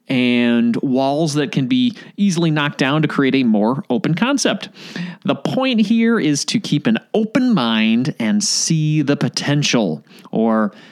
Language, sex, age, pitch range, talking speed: English, male, 30-49, 165-230 Hz, 155 wpm